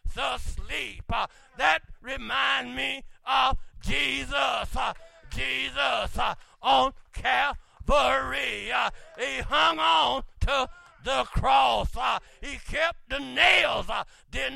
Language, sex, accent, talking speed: English, male, American, 80 wpm